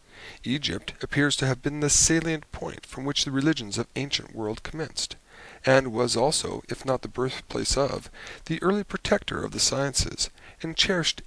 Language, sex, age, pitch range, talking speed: English, male, 50-69, 125-160 Hz, 170 wpm